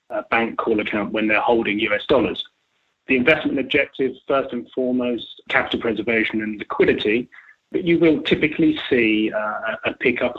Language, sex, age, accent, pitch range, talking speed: English, male, 30-49, British, 115-145 Hz, 155 wpm